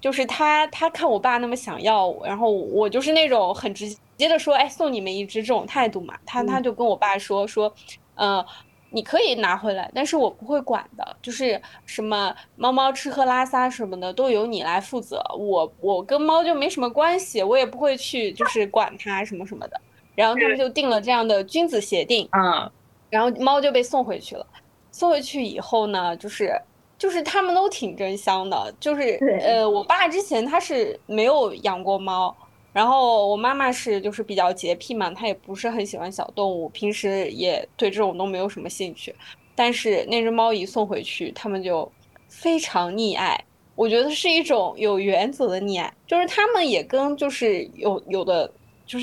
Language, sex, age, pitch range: Chinese, female, 20-39, 200-285 Hz